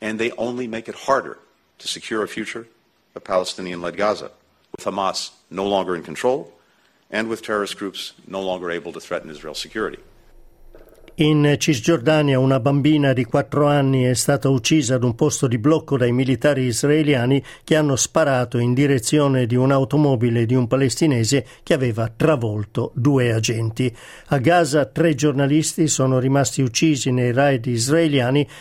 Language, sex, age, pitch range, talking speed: Italian, male, 50-69, 125-150 Hz, 155 wpm